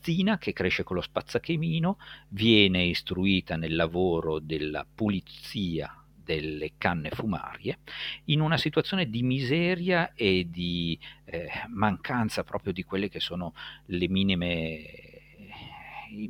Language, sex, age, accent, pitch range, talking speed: Italian, male, 50-69, native, 90-135 Hz, 105 wpm